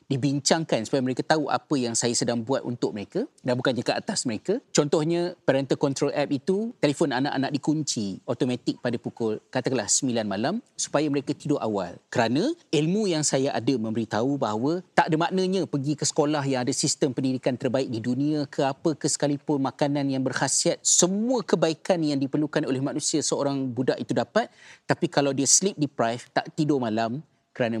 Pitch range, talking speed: 120-150 Hz, 175 wpm